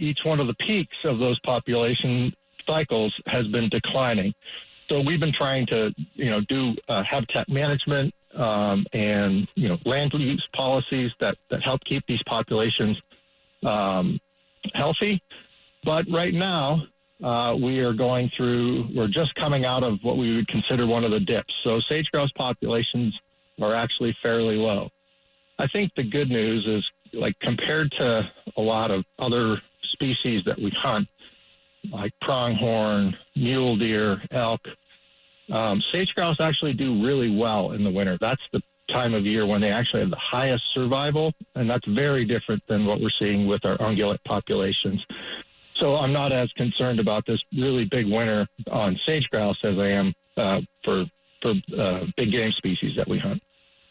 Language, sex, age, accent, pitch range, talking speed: English, male, 50-69, American, 105-145 Hz, 165 wpm